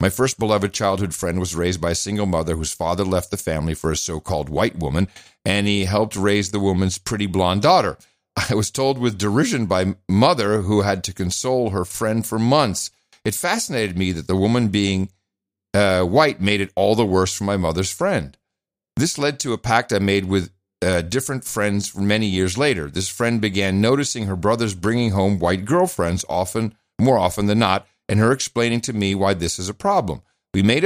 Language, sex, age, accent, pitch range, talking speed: English, male, 50-69, American, 95-115 Hz, 200 wpm